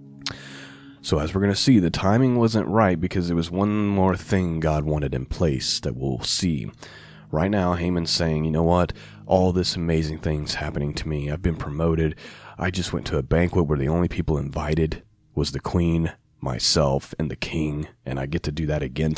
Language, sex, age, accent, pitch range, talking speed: English, male, 30-49, American, 80-105 Hz, 205 wpm